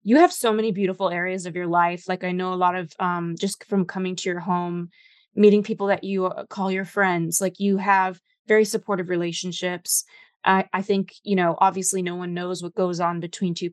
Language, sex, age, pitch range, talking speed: English, female, 20-39, 180-210 Hz, 215 wpm